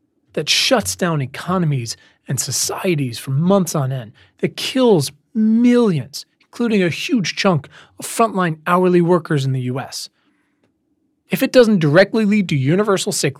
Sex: male